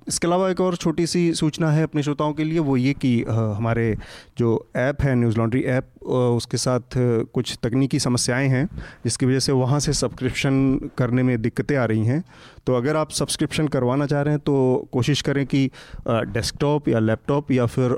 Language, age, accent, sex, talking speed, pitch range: Hindi, 30-49, native, male, 190 wpm, 120-145 Hz